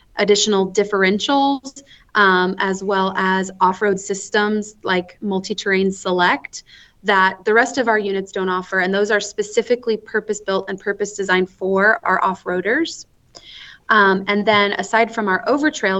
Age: 20-39